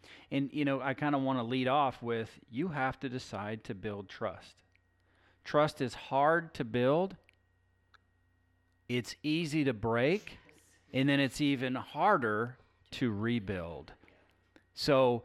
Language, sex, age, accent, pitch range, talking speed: English, male, 40-59, American, 95-135 Hz, 140 wpm